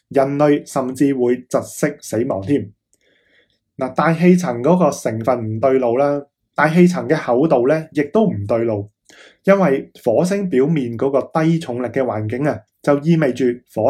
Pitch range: 115-150 Hz